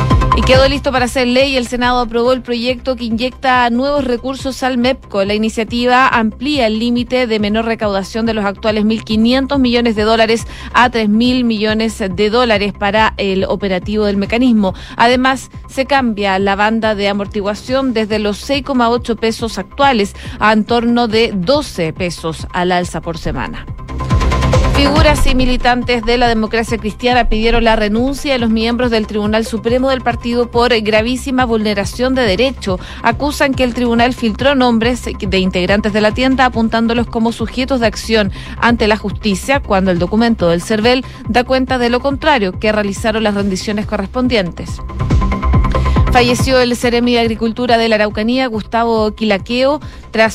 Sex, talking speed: female, 155 wpm